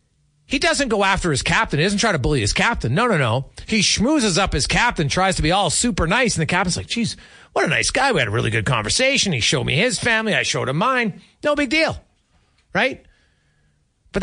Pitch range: 115-185 Hz